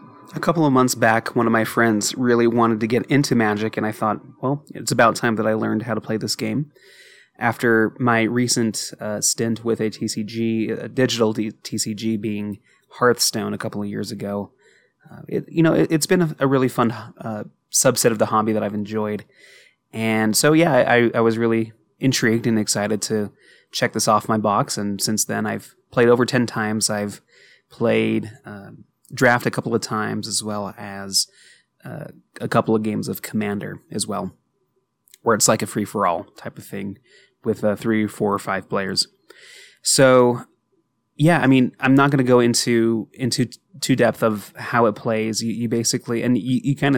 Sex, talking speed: male, 195 wpm